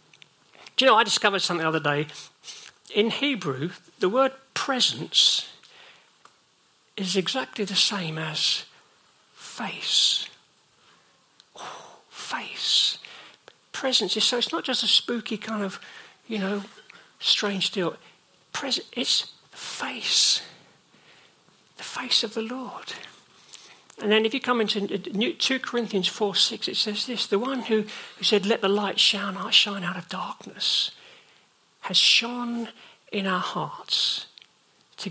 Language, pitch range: English, 185-235 Hz